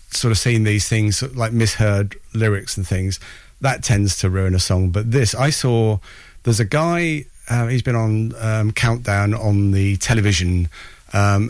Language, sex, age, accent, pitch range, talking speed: English, male, 40-59, British, 100-120 Hz, 170 wpm